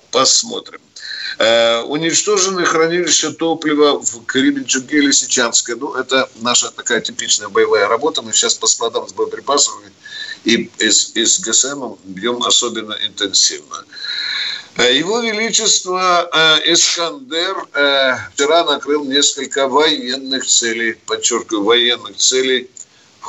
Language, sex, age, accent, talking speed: Russian, male, 50-69, native, 110 wpm